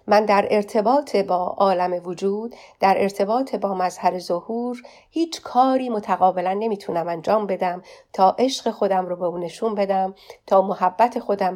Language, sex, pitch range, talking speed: Persian, female, 185-225 Hz, 140 wpm